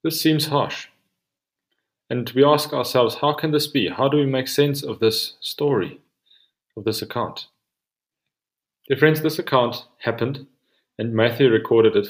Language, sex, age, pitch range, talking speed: English, male, 30-49, 110-150 Hz, 155 wpm